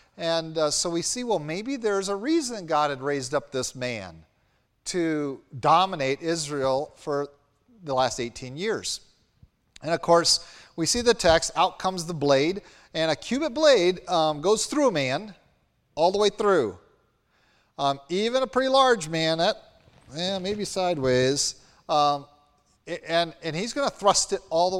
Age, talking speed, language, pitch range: 40-59, 165 wpm, English, 130-180 Hz